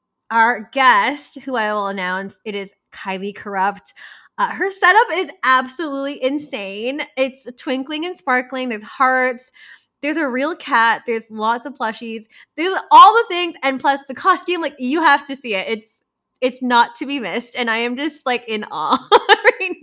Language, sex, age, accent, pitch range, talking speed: English, female, 20-39, American, 210-280 Hz, 175 wpm